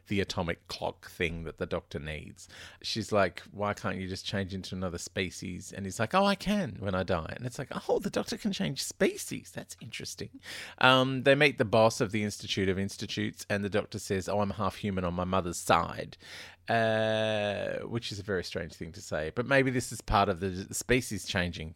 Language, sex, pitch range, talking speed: English, male, 95-120 Hz, 215 wpm